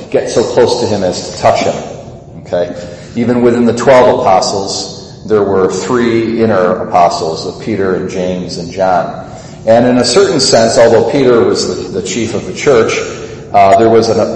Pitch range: 100-125 Hz